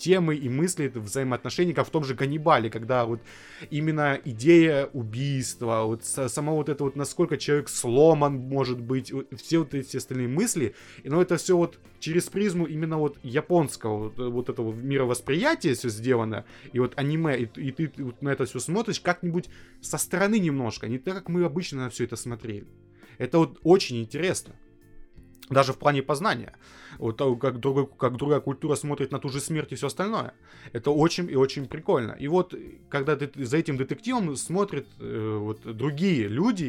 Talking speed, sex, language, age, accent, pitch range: 175 wpm, male, Russian, 20-39, native, 125-170 Hz